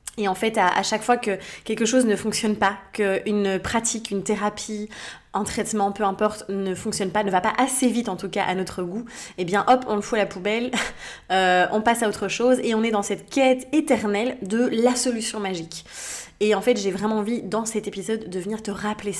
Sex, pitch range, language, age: female, 180-215 Hz, French, 20-39